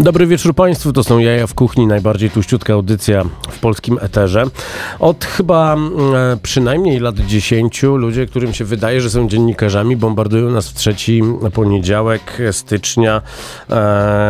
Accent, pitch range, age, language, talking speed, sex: native, 105-125 Hz, 40-59, Polish, 140 wpm, male